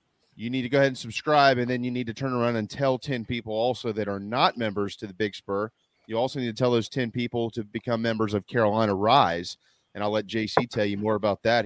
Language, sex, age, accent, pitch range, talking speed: English, male, 30-49, American, 110-140 Hz, 260 wpm